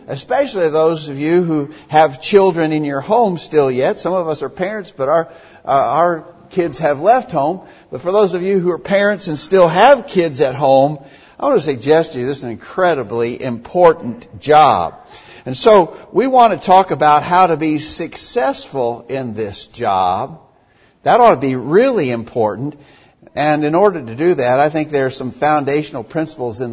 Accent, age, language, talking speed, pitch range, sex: American, 60-79, English, 190 wpm, 120-155 Hz, male